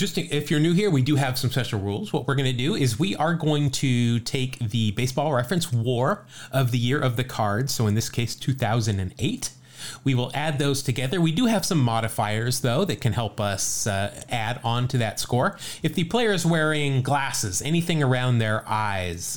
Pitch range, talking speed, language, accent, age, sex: 110-135 Hz, 215 wpm, English, American, 30-49, male